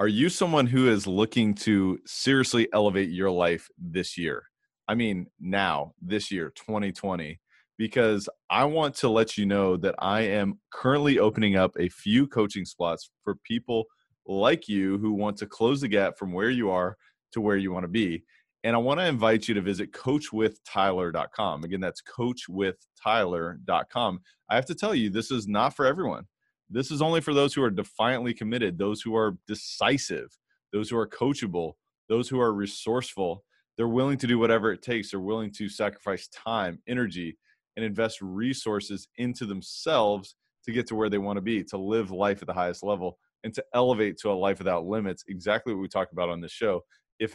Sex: male